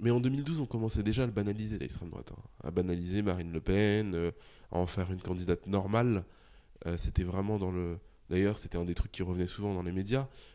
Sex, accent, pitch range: male, French, 90-115 Hz